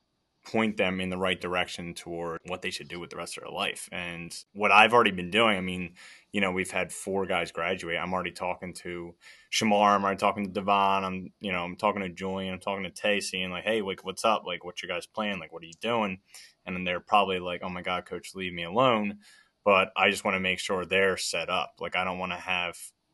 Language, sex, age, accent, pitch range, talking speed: English, male, 20-39, American, 90-100 Hz, 250 wpm